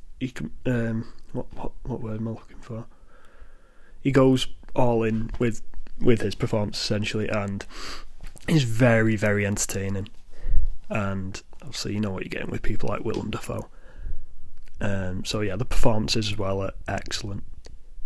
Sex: male